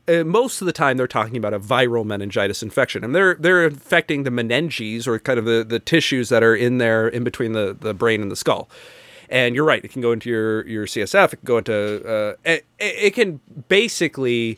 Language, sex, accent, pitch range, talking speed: English, male, American, 115-160 Hz, 220 wpm